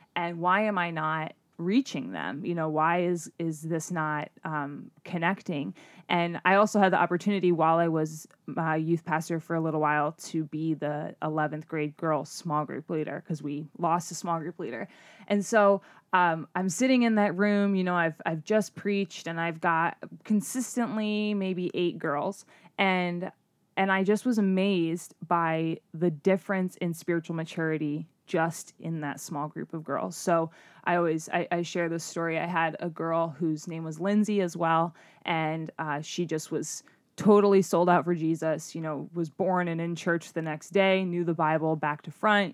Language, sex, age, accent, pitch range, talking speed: English, female, 20-39, American, 160-185 Hz, 190 wpm